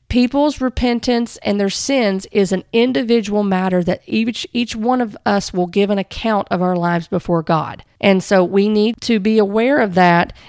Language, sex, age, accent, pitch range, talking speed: English, female, 40-59, American, 190-230 Hz, 190 wpm